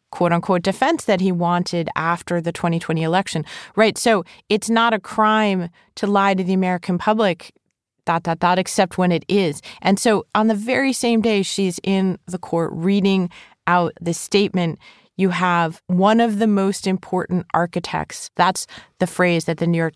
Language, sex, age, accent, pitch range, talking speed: English, female, 30-49, American, 165-190 Hz, 175 wpm